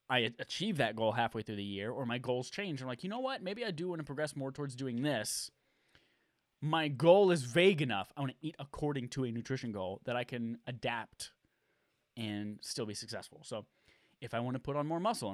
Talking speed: 225 wpm